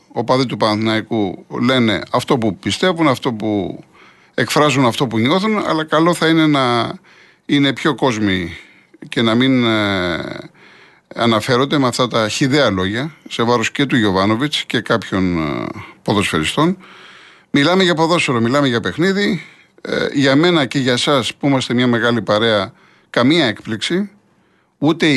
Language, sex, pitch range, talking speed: Greek, male, 120-180 Hz, 140 wpm